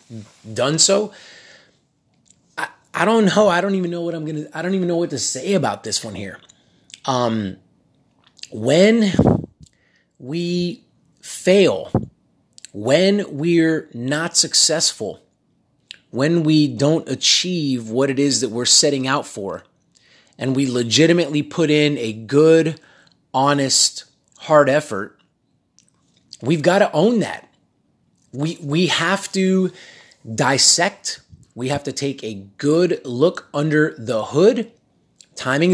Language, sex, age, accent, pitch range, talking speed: English, male, 30-49, American, 130-180 Hz, 130 wpm